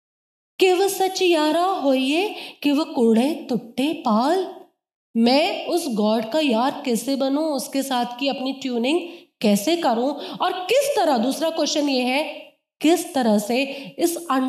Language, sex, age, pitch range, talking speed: Hindi, female, 20-39, 245-325 Hz, 140 wpm